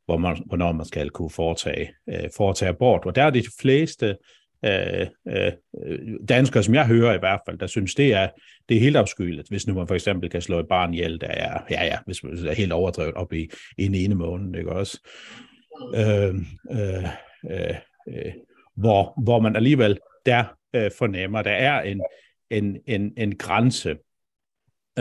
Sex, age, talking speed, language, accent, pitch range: male, 60-79, 180 wpm, Danish, native, 95-130 Hz